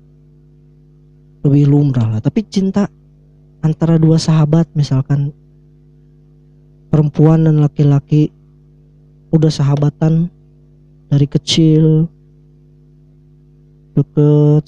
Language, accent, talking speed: Indonesian, native, 65 wpm